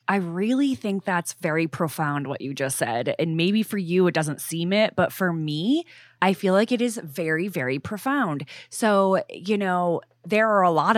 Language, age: English, 20-39